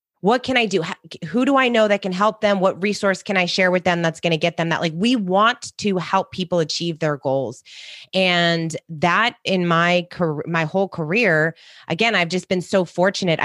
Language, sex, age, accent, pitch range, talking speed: English, female, 20-39, American, 160-195 Hz, 215 wpm